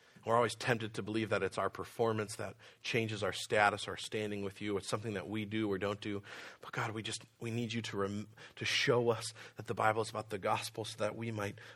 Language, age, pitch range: English, 40-59, 95-115 Hz